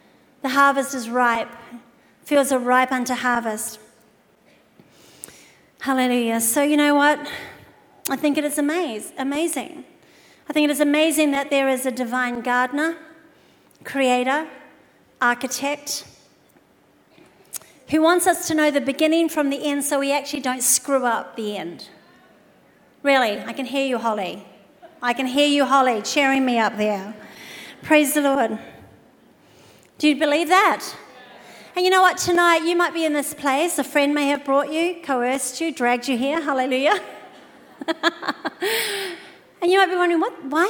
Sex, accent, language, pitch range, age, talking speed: female, Australian, English, 250-310 Hz, 40-59, 150 wpm